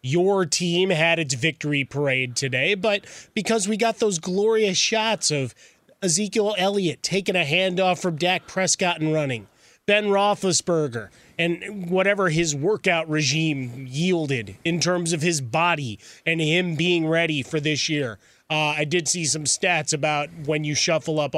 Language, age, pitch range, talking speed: English, 30-49, 145-180 Hz, 155 wpm